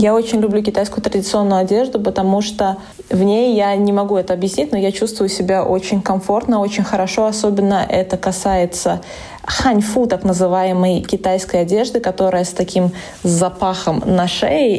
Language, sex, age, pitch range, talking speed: Russian, female, 20-39, 180-205 Hz, 150 wpm